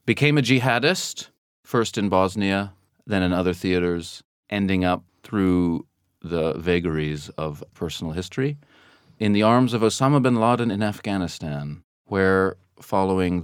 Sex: male